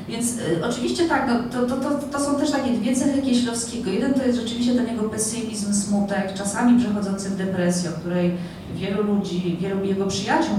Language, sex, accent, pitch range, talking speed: Polish, female, native, 170-205 Hz, 195 wpm